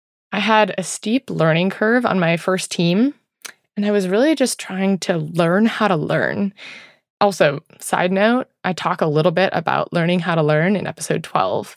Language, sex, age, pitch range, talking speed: English, female, 20-39, 170-215 Hz, 190 wpm